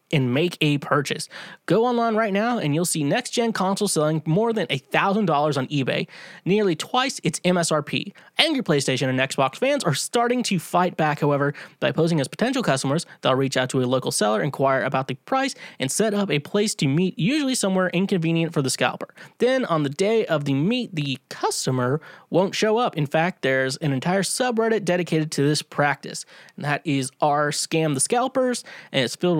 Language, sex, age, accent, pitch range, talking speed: English, male, 20-39, American, 145-215 Hz, 190 wpm